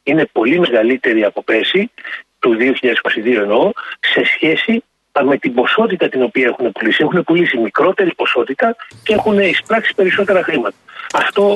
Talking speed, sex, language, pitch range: 135 wpm, male, Greek, 150-220 Hz